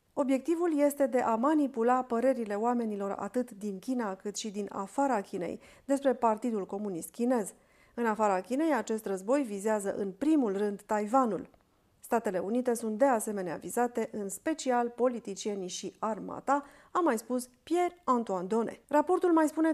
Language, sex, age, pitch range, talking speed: Romanian, female, 40-59, 215-275 Hz, 145 wpm